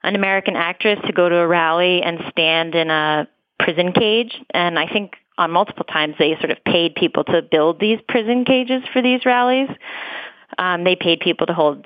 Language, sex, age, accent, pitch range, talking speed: English, female, 30-49, American, 165-210 Hz, 195 wpm